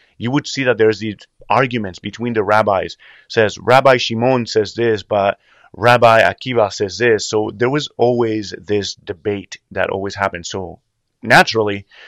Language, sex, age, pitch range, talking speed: English, male, 30-49, 100-125 Hz, 155 wpm